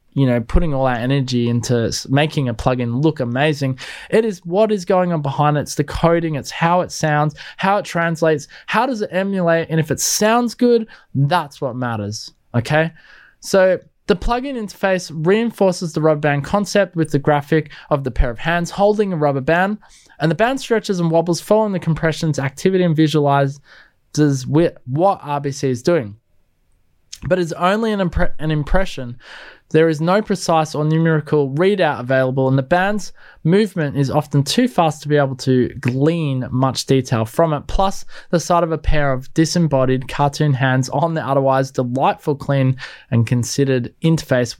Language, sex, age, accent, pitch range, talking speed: English, male, 20-39, Australian, 135-180 Hz, 175 wpm